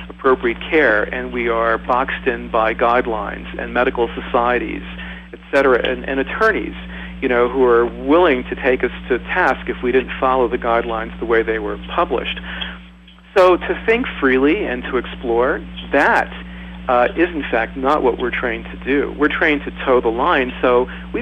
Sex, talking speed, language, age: male, 180 wpm, English, 50-69